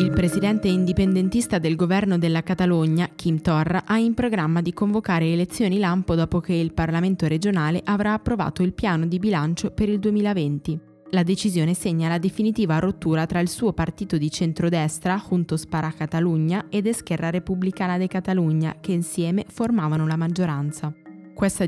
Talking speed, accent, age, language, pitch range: 155 wpm, native, 20-39, Italian, 160-190 Hz